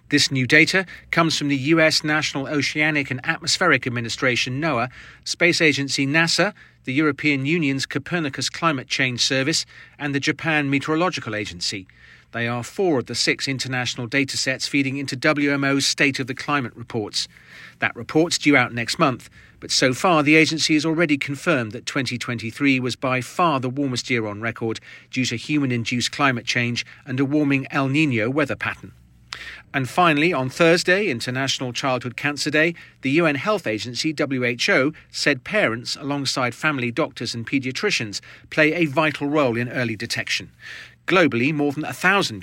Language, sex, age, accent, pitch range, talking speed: English, male, 40-59, British, 120-150 Hz, 160 wpm